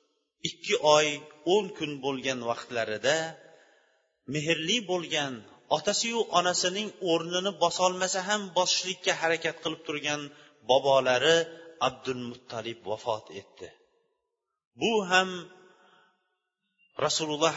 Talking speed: 90 wpm